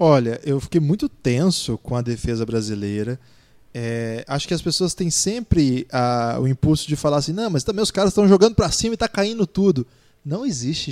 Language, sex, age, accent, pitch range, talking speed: Portuguese, male, 20-39, Brazilian, 125-170 Hz, 205 wpm